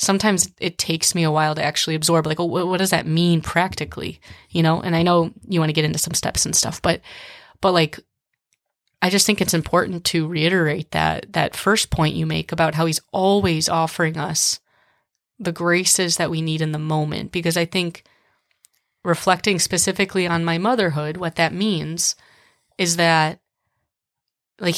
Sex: female